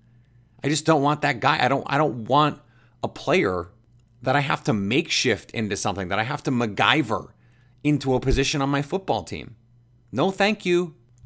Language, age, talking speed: English, 30-49, 185 wpm